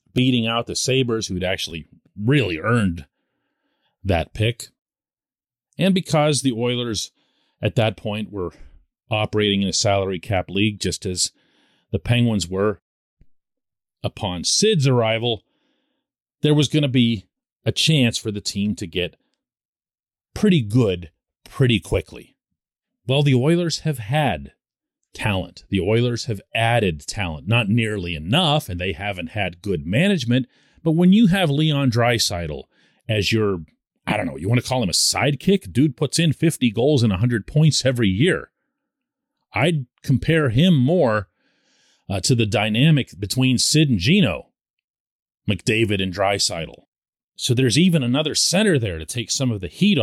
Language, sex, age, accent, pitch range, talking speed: English, male, 40-59, American, 105-155 Hz, 150 wpm